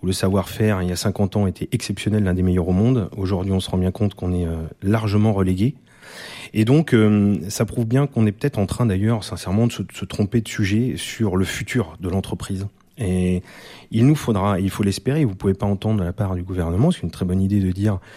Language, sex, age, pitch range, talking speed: French, male, 30-49, 90-110 Hz, 230 wpm